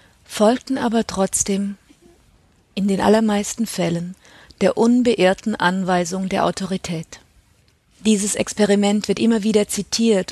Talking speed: 105 wpm